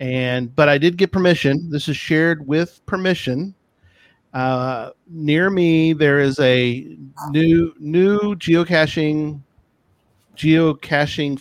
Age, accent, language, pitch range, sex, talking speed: 40-59, American, English, 130-160 Hz, male, 110 wpm